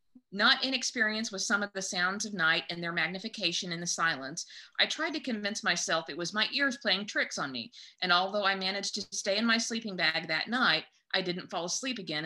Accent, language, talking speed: American, English, 220 wpm